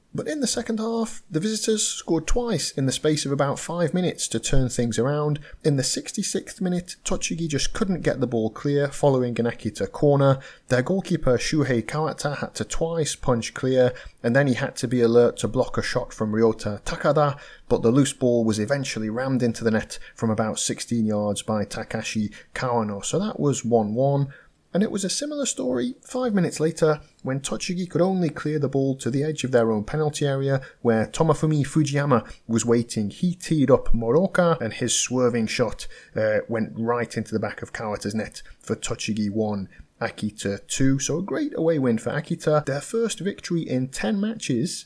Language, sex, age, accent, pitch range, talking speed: English, male, 30-49, British, 115-165 Hz, 190 wpm